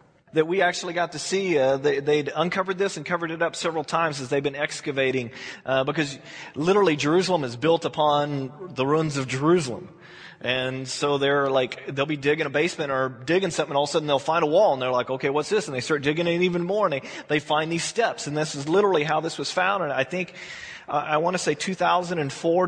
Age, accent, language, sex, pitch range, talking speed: 30-49, American, English, male, 140-180 Hz, 235 wpm